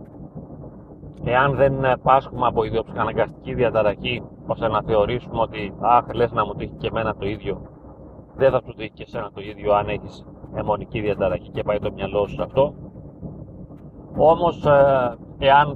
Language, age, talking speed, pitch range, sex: Greek, 40-59, 150 wpm, 115-140 Hz, male